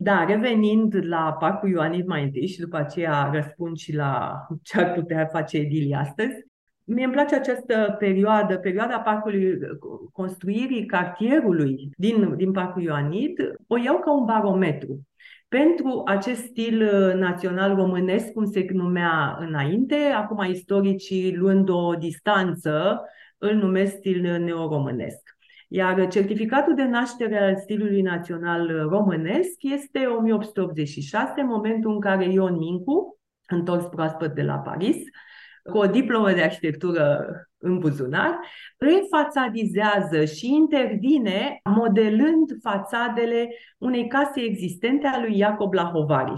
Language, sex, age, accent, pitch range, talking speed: Romanian, female, 40-59, native, 175-235 Hz, 120 wpm